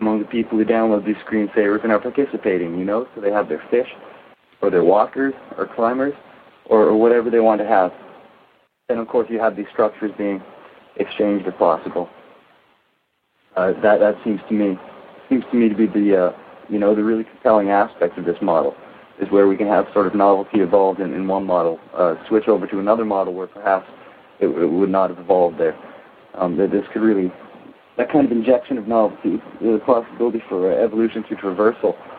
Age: 30-49